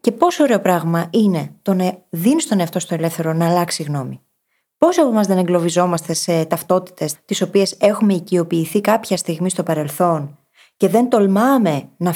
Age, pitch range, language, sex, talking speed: 20-39, 165-225 Hz, Greek, female, 170 wpm